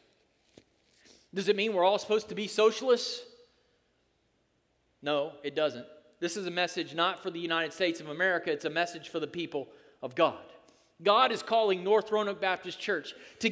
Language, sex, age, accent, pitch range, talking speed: English, male, 40-59, American, 190-240 Hz, 175 wpm